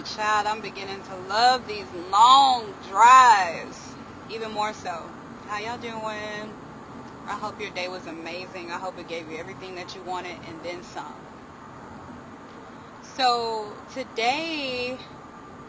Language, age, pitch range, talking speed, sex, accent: English, 20-39, 185-230 Hz, 130 wpm, female, American